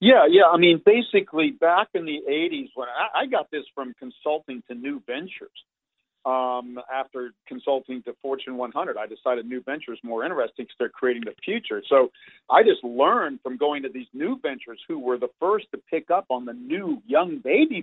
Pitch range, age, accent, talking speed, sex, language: 130-175 Hz, 50-69, American, 195 wpm, male, English